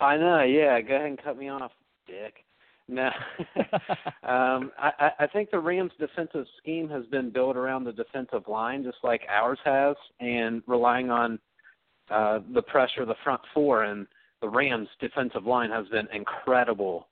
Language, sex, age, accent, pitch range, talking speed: English, male, 40-59, American, 105-130 Hz, 170 wpm